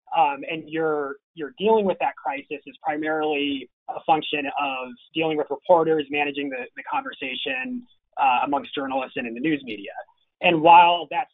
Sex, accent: male, American